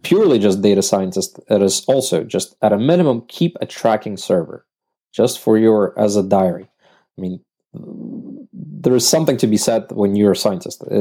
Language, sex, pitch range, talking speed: English, male, 105-130 Hz, 180 wpm